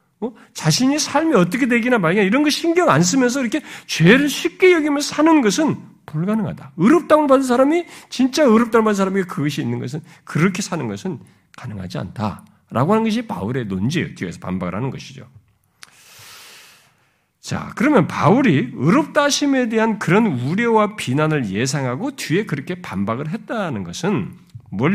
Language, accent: Korean, native